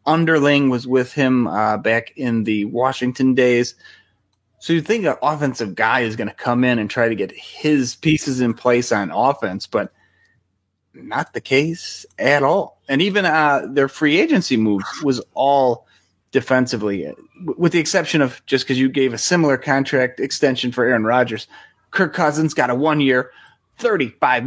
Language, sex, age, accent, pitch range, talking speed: English, male, 30-49, American, 120-155 Hz, 165 wpm